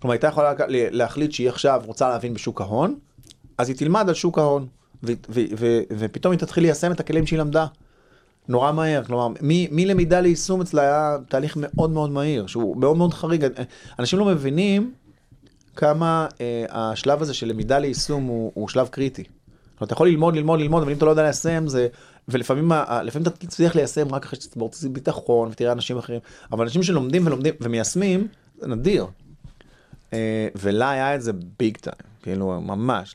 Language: Hebrew